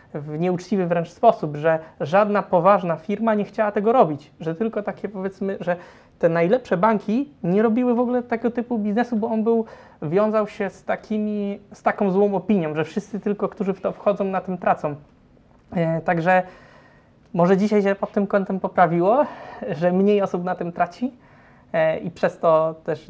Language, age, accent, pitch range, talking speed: Polish, 20-39, native, 170-205 Hz, 170 wpm